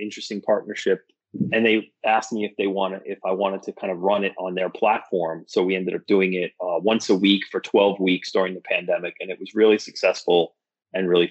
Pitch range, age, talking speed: 100-125 Hz, 30-49, 230 wpm